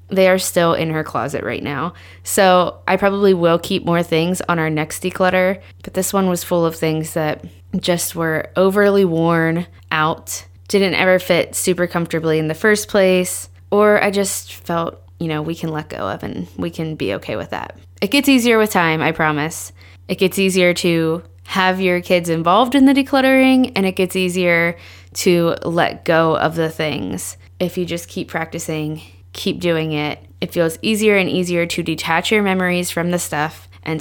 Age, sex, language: 20-39, female, English